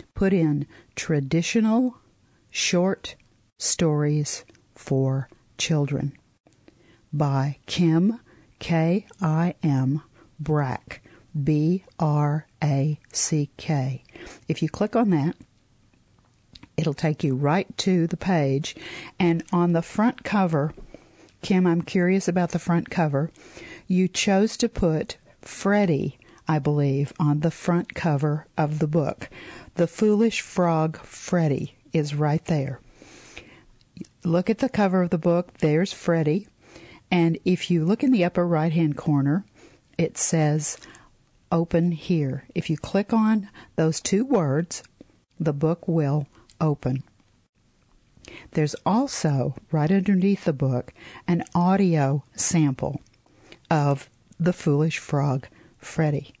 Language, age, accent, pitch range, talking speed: English, 50-69, American, 145-180 Hz, 110 wpm